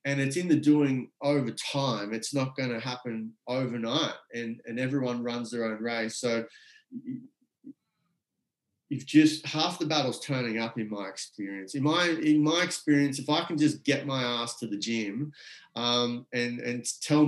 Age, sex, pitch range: 30-49, male, 120-145 Hz